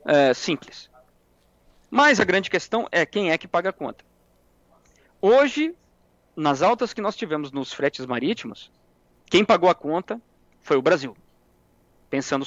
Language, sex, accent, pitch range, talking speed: Portuguese, male, Brazilian, 135-210 Hz, 140 wpm